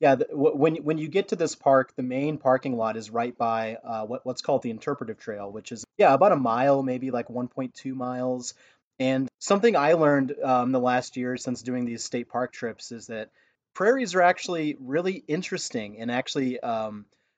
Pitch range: 115-145 Hz